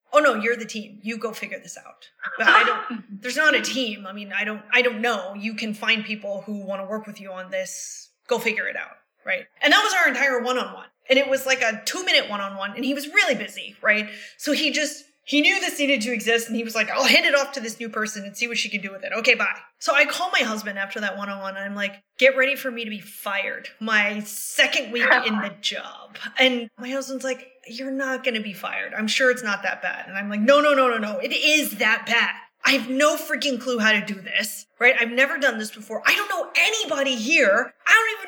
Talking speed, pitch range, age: 270 wpm, 215-300 Hz, 20-39